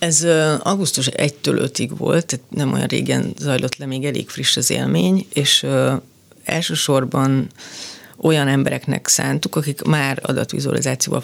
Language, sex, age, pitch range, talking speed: Hungarian, female, 30-49, 135-160 Hz, 135 wpm